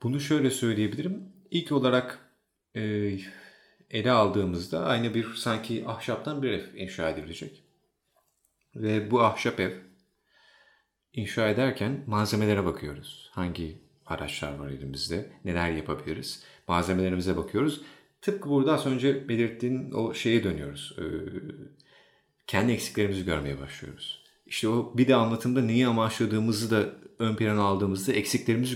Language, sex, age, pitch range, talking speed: Turkish, male, 40-59, 95-125 Hz, 120 wpm